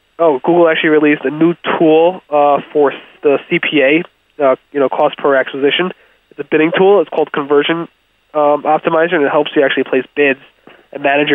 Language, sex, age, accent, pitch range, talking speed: English, male, 20-39, American, 140-160 Hz, 185 wpm